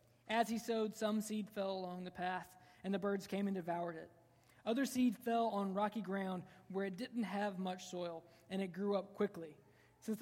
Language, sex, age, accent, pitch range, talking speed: English, male, 20-39, American, 175-220 Hz, 200 wpm